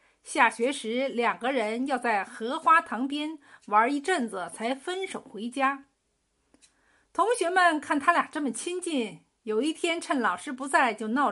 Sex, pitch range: female, 235-315 Hz